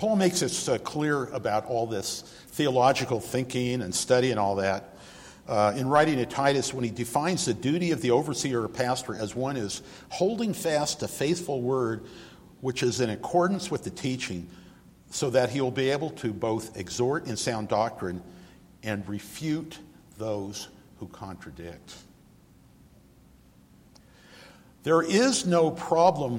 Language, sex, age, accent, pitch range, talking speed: English, male, 60-79, American, 110-165 Hz, 150 wpm